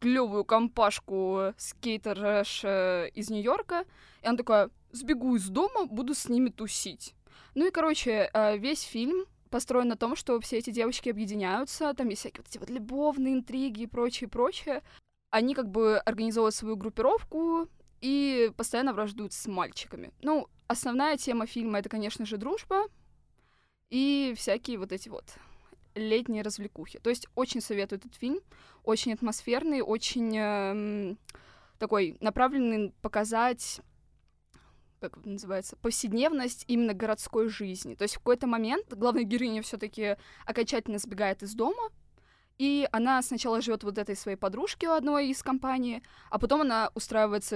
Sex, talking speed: female, 145 wpm